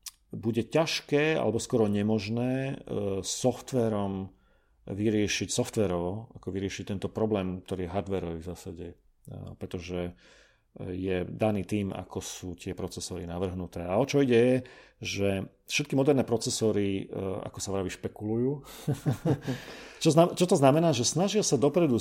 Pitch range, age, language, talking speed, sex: 95-125 Hz, 40-59, Slovak, 125 wpm, male